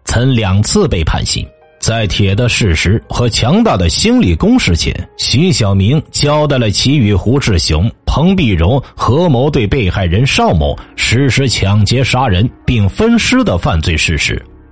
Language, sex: Chinese, male